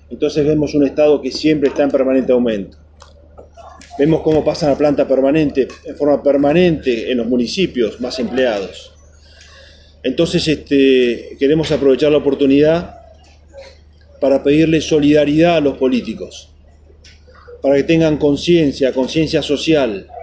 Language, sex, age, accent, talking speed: Spanish, male, 40-59, Argentinian, 120 wpm